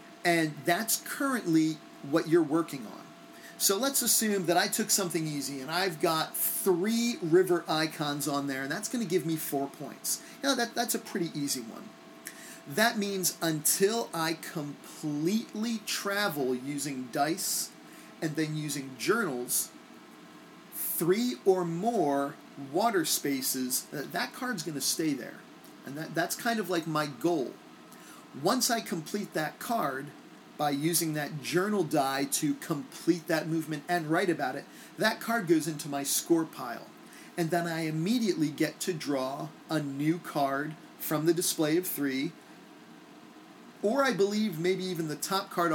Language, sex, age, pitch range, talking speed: English, male, 40-59, 150-200 Hz, 155 wpm